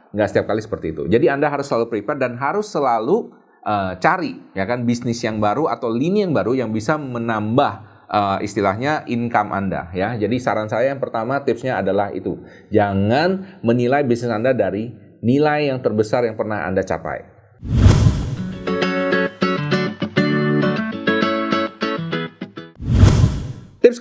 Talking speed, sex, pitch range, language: 130 wpm, male, 105-150 Hz, Indonesian